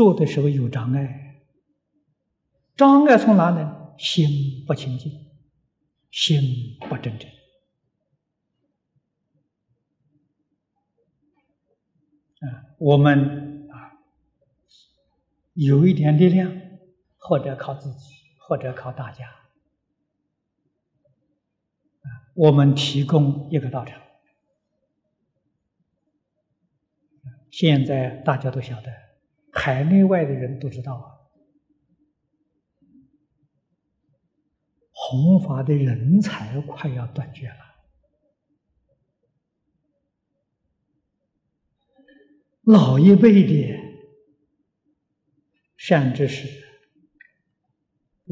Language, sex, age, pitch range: Chinese, male, 50-69, 135-170 Hz